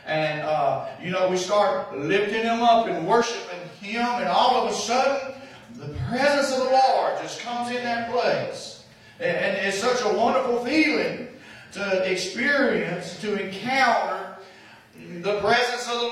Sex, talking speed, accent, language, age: male, 155 wpm, American, English, 40-59